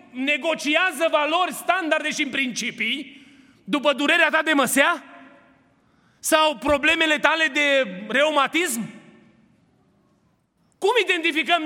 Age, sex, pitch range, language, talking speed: 30-49, male, 240-320 Hz, Romanian, 95 wpm